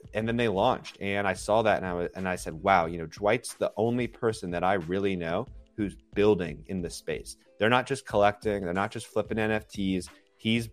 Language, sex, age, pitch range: English, male, 30-49, 90-115 Hz